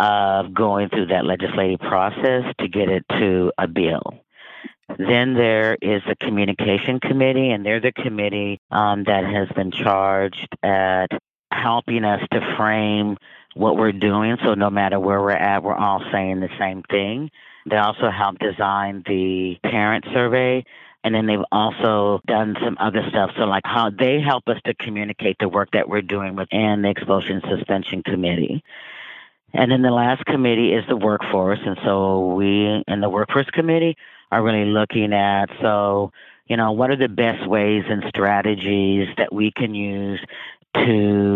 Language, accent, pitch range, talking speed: English, American, 95-110 Hz, 165 wpm